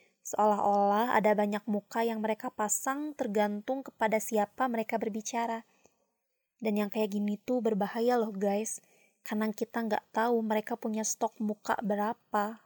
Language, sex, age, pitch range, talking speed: Indonesian, female, 20-39, 210-245 Hz, 135 wpm